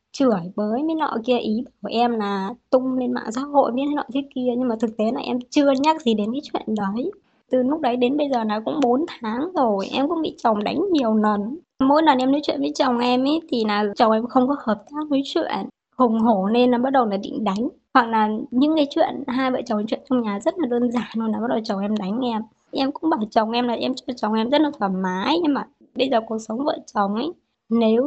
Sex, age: male, 20-39